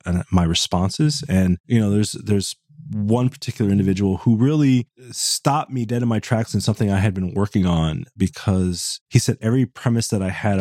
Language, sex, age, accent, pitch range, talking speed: English, male, 30-49, American, 100-135 Hz, 190 wpm